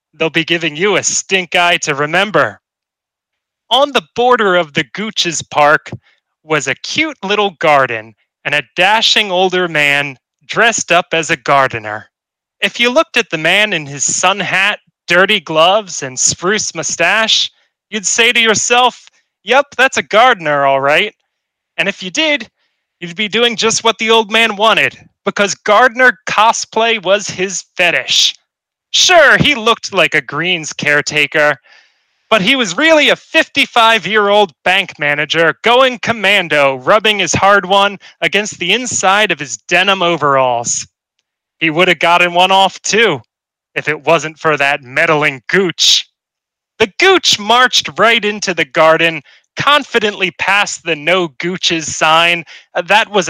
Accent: American